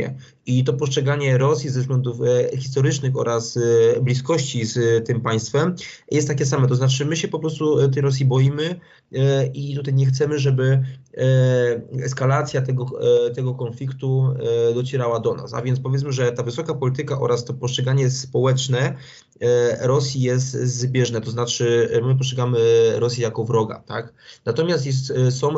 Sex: male